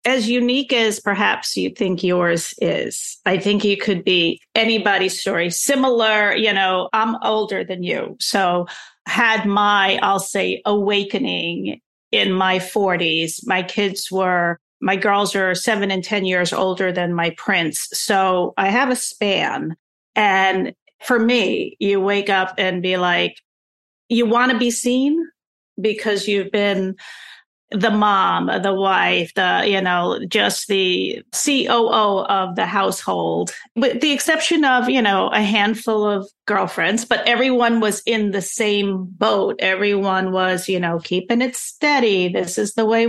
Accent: American